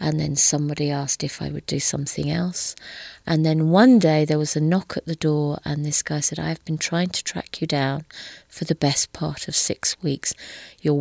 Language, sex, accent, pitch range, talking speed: English, female, British, 145-180 Hz, 220 wpm